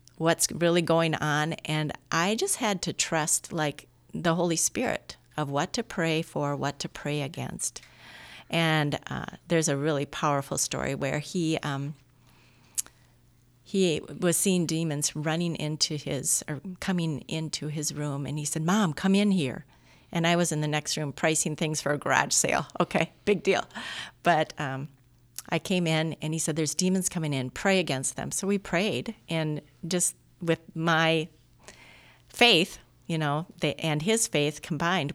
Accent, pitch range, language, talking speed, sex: American, 145-175 Hz, English, 165 wpm, female